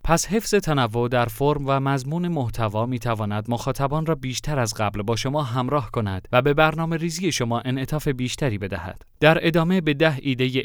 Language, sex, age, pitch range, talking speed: Persian, male, 30-49, 115-150 Hz, 175 wpm